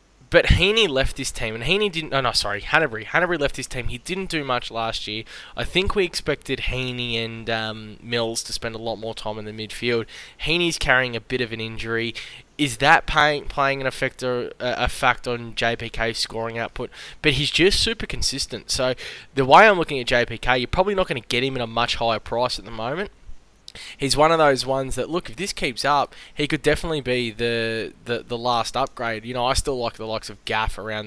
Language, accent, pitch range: English, Australian, 115-135 Hz